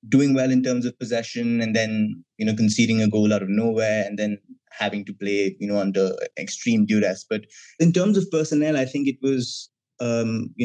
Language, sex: English, male